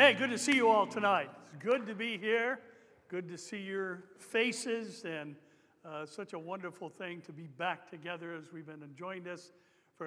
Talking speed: 195 wpm